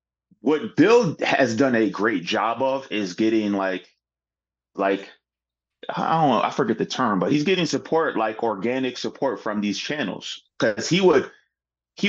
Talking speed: 165 wpm